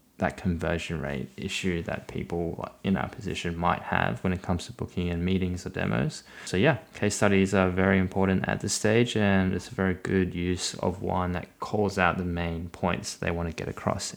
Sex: male